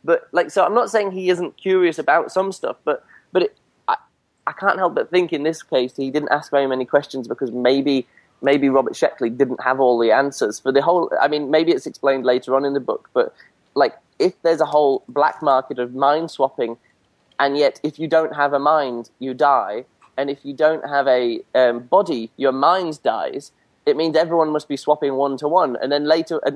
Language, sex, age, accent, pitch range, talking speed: English, male, 20-39, British, 125-165 Hz, 220 wpm